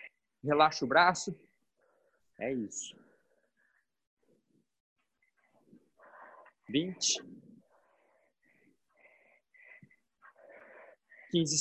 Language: Portuguese